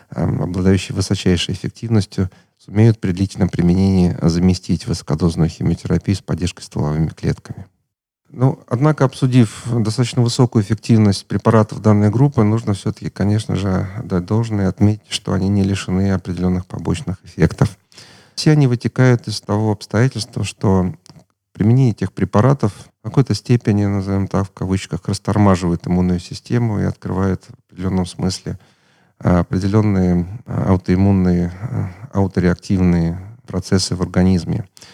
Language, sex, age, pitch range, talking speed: Russian, male, 40-59, 95-115 Hz, 115 wpm